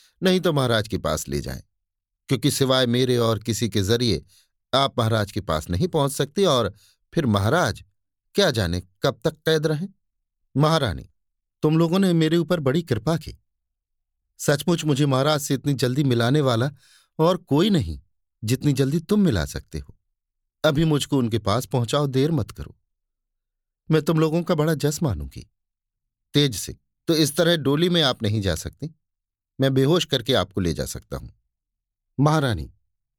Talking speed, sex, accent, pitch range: 165 wpm, male, native, 95-150 Hz